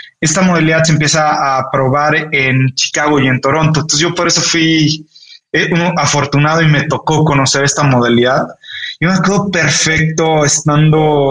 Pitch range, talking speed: 140-165 Hz, 155 wpm